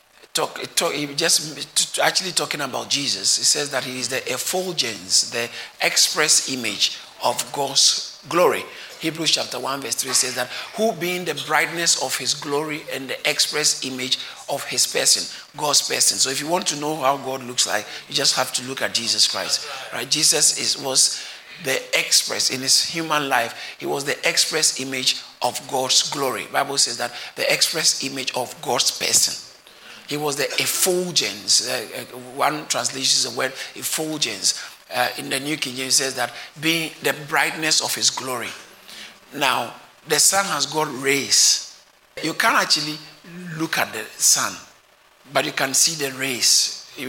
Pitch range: 130-155 Hz